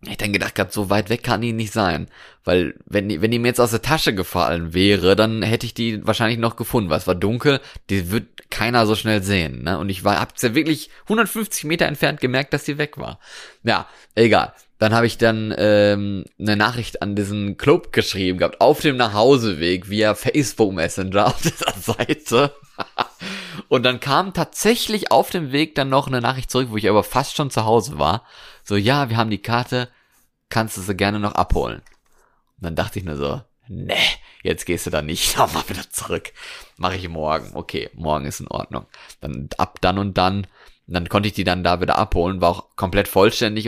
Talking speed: 205 wpm